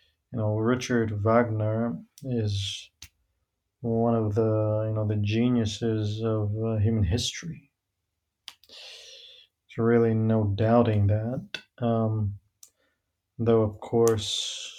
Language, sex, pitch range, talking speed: English, male, 100-115 Hz, 100 wpm